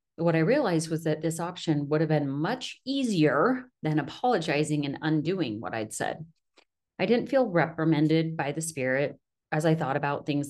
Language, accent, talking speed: English, American, 175 wpm